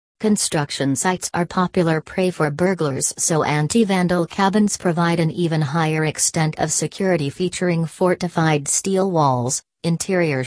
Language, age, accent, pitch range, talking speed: English, 40-59, American, 150-180 Hz, 125 wpm